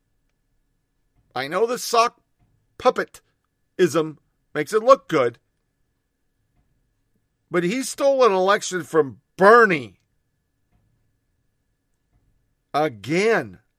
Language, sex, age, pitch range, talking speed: English, male, 50-69, 125-185 Hz, 75 wpm